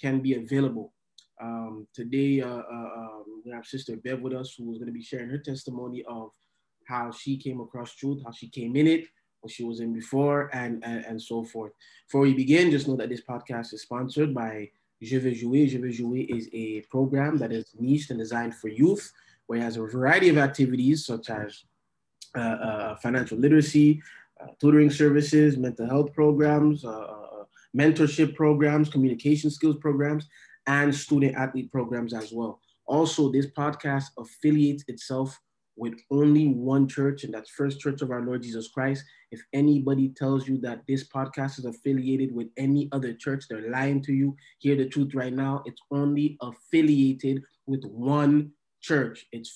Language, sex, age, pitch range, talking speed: English, male, 20-39, 120-145 Hz, 180 wpm